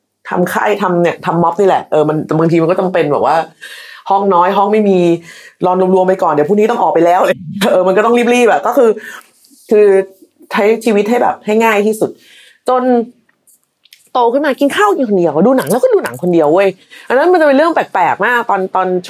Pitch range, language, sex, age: 180-255 Hz, Thai, female, 20-39